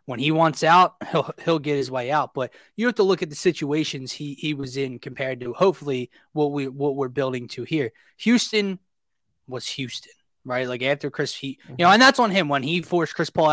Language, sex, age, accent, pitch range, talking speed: English, male, 20-39, American, 135-165 Hz, 225 wpm